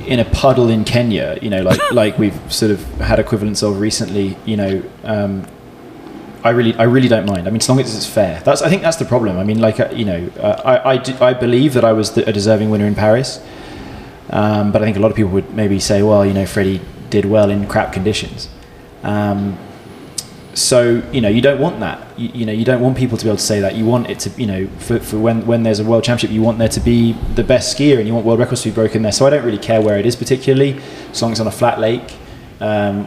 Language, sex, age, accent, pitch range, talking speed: English, male, 20-39, British, 105-120 Hz, 270 wpm